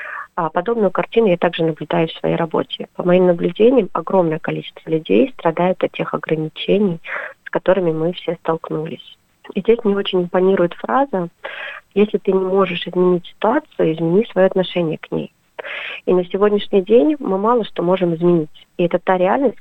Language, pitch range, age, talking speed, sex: Russian, 170-200 Hz, 30-49, 160 wpm, female